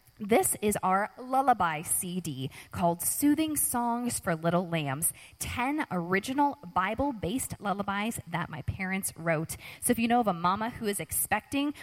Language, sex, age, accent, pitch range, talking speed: English, female, 20-39, American, 165-230 Hz, 145 wpm